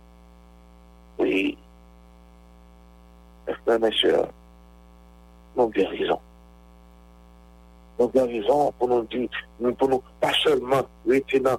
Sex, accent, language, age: male, French, English, 60-79